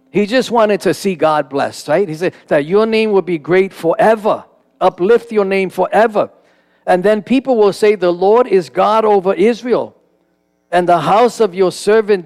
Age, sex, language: 50-69, male, English